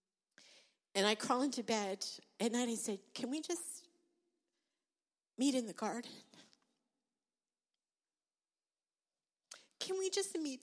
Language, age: English, 50-69